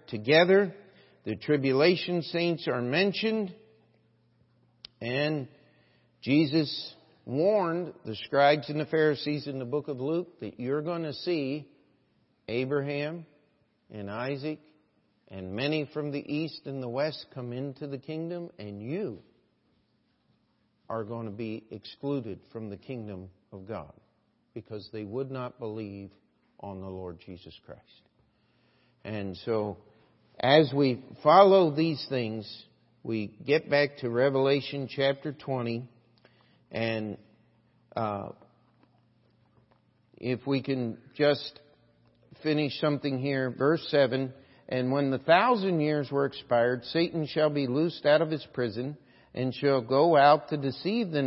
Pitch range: 115-150 Hz